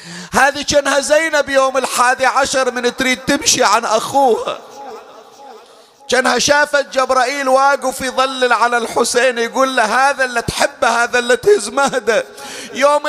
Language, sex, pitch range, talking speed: Arabic, male, 230-265 Hz, 125 wpm